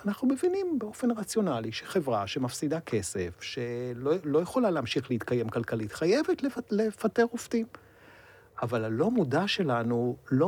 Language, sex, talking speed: Hebrew, male, 125 wpm